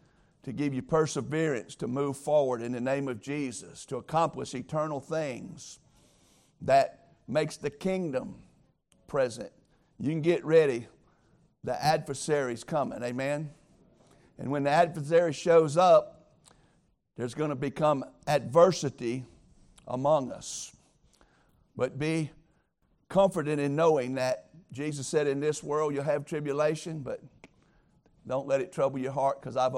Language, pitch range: English, 135-160 Hz